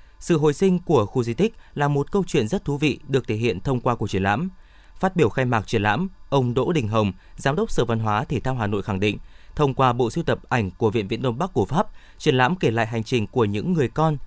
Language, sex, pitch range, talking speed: Vietnamese, male, 110-150 Hz, 280 wpm